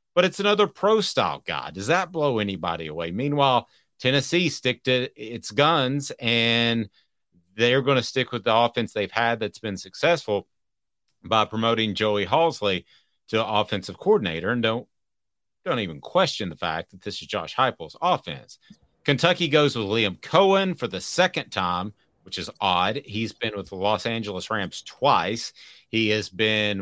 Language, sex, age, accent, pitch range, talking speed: English, male, 40-59, American, 100-130 Hz, 165 wpm